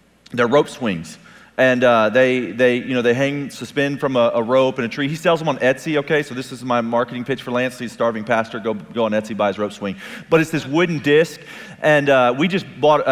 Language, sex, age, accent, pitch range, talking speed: English, male, 30-49, American, 125-165 Hz, 250 wpm